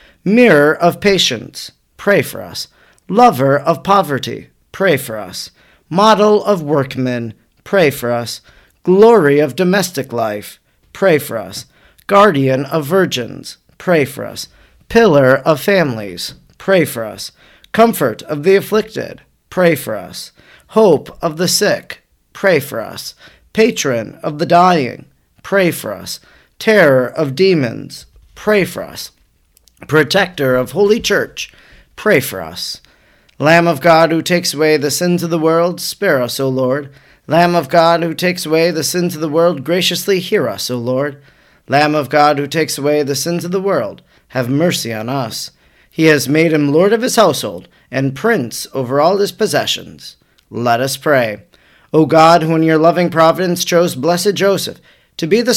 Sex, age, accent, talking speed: male, 40-59, American, 160 wpm